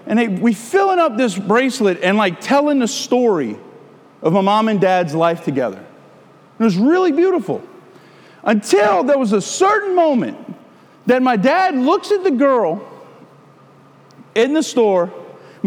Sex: male